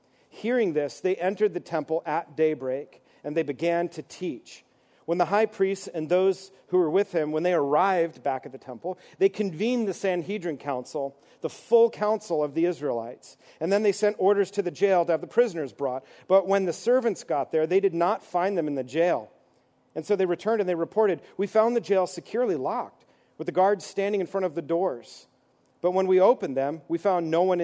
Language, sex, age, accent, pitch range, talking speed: English, male, 40-59, American, 155-195 Hz, 215 wpm